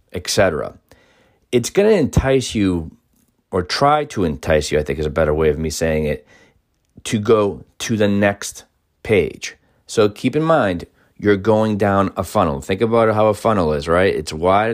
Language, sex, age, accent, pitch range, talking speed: English, male, 40-59, American, 90-115 Hz, 185 wpm